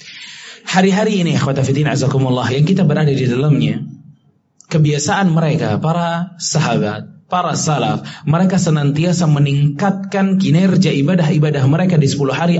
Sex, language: male, Indonesian